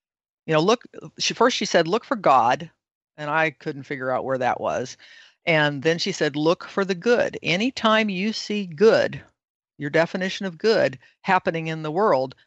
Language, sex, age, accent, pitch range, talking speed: English, female, 50-69, American, 150-180 Hz, 190 wpm